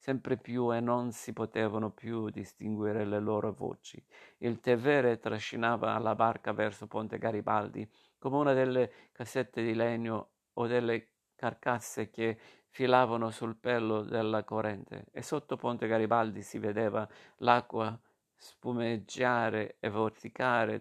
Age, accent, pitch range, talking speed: 50-69, native, 110-120 Hz, 125 wpm